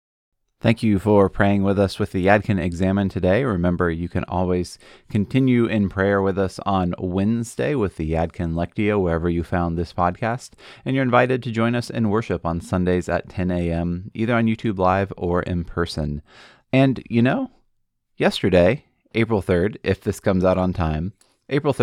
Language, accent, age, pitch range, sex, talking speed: English, American, 30-49, 90-115 Hz, male, 175 wpm